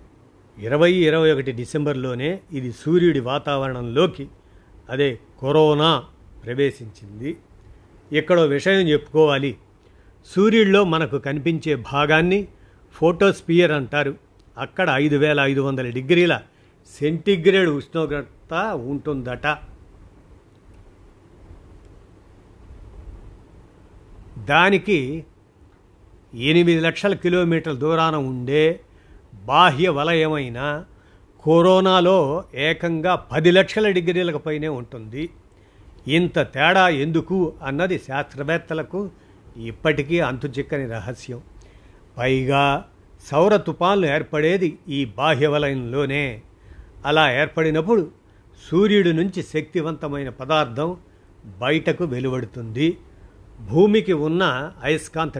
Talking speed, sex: 75 wpm, male